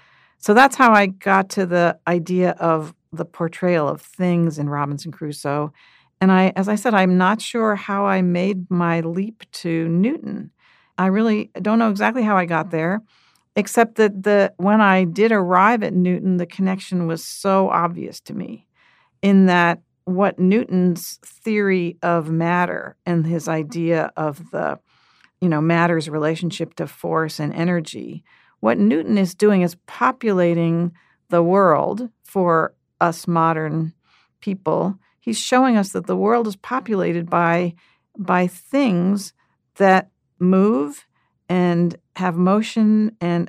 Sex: female